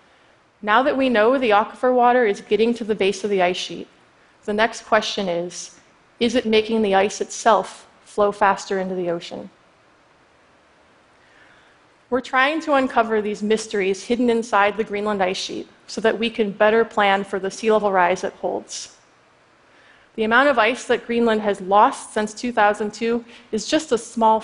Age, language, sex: 30-49, Chinese, female